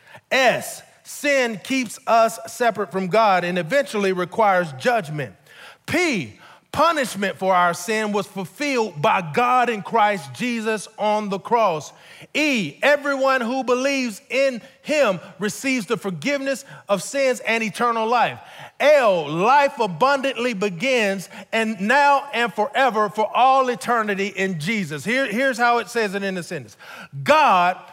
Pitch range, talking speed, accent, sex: 190-260 Hz, 135 wpm, American, male